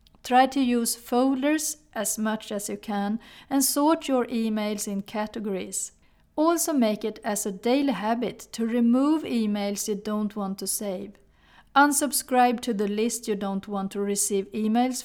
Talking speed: 160 wpm